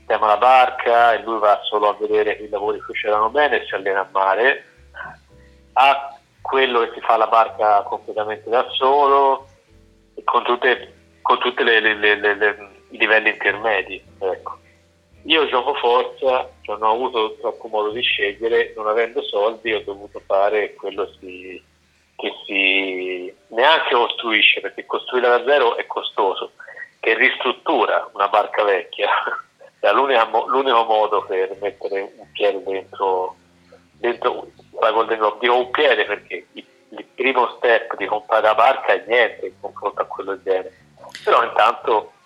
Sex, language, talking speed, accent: male, Italian, 140 wpm, native